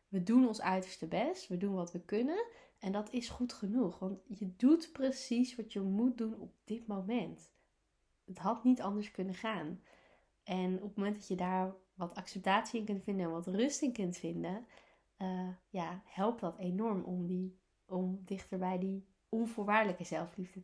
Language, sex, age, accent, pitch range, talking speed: Dutch, female, 20-39, Dutch, 185-235 Hz, 180 wpm